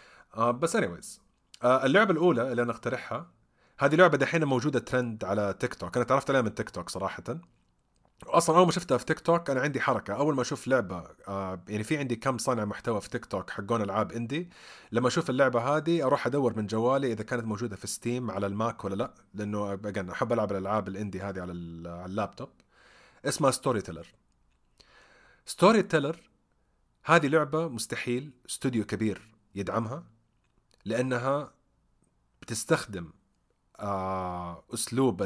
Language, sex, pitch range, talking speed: Arabic, male, 100-135 Hz, 150 wpm